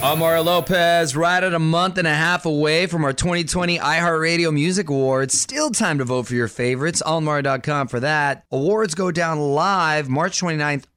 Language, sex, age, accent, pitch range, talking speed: English, male, 30-49, American, 100-150 Hz, 175 wpm